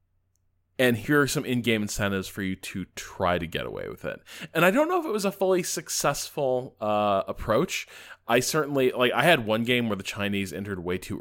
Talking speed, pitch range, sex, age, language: 215 wpm, 90-110 Hz, male, 20-39, English